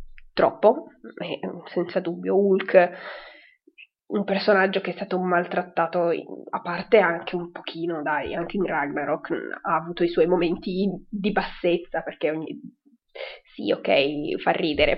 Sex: female